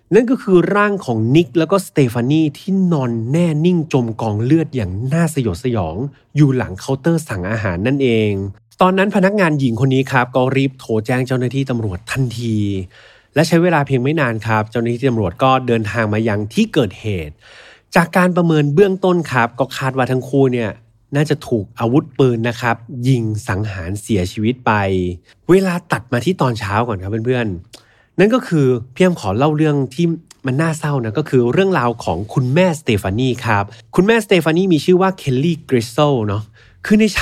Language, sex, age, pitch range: Thai, male, 20-39, 115-160 Hz